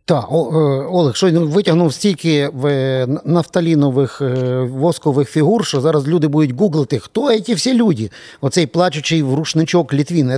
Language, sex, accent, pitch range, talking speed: Ukrainian, male, native, 140-175 Hz, 135 wpm